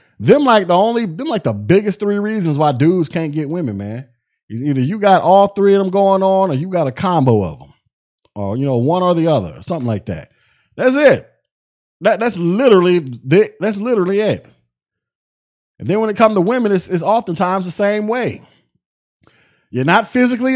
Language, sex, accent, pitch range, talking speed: English, male, American, 140-210 Hz, 195 wpm